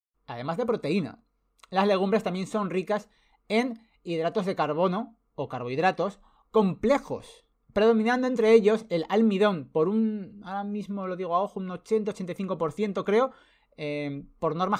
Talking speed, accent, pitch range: 140 wpm, Spanish, 150-210 Hz